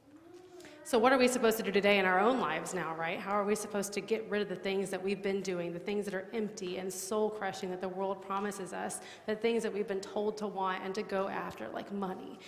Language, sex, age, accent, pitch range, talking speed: English, female, 30-49, American, 180-210 Hz, 260 wpm